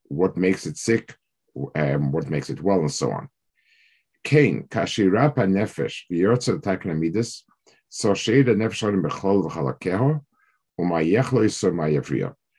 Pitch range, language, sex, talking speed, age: 80-115 Hz, English, male, 55 wpm, 50-69